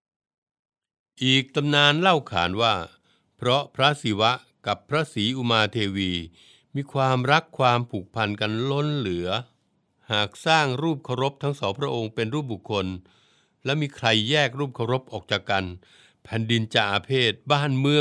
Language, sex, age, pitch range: Thai, male, 60-79, 105-135 Hz